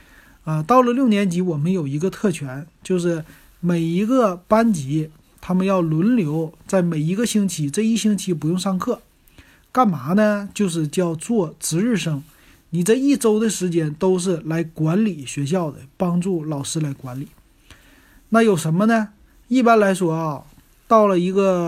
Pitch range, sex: 155-205 Hz, male